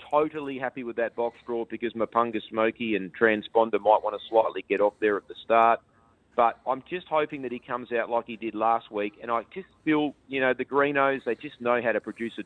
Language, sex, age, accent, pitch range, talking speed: English, male, 40-59, Australian, 105-125 Hz, 235 wpm